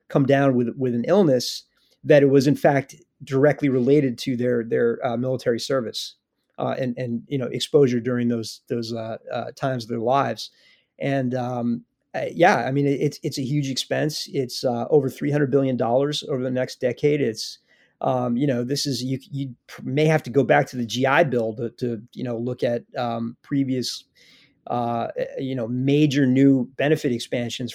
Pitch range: 120-145 Hz